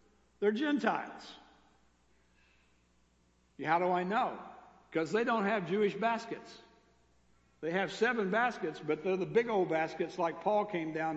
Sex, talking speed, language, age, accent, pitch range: male, 140 wpm, English, 60-79, American, 130-185 Hz